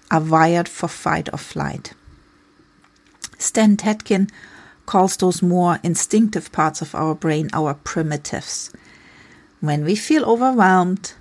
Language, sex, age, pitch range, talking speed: English, female, 40-59, 155-195 Hz, 120 wpm